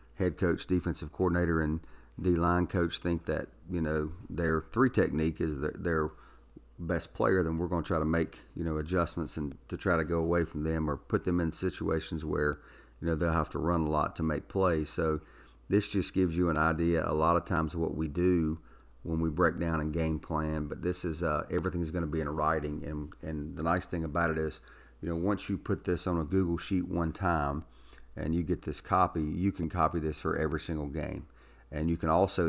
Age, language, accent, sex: 40-59, English, American, male